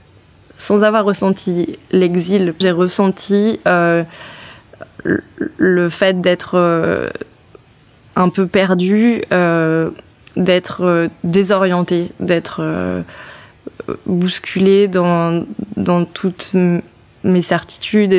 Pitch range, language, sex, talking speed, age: 170-190 Hz, French, female, 85 wpm, 20-39